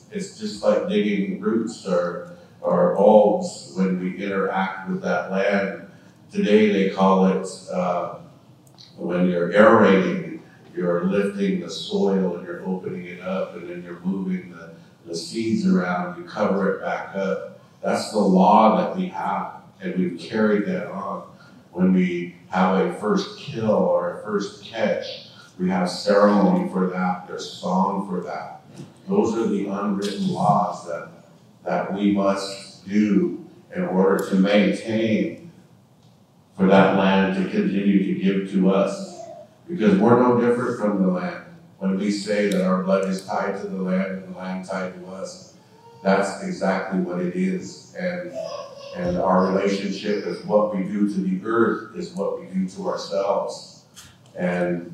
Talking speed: 155 wpm